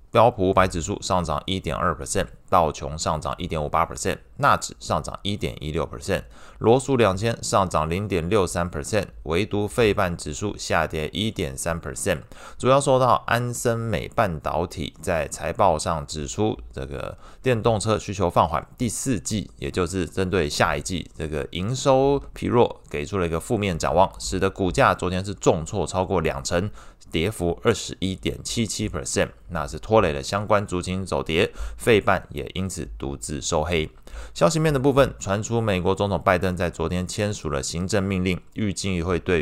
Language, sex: Chinese, male